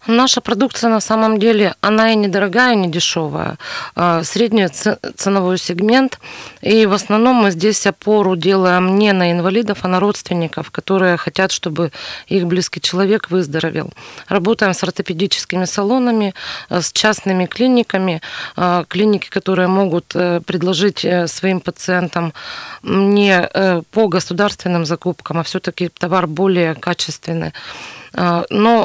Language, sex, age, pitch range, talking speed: Russian, female, 20-39, 175-210 Hz, 120 wpm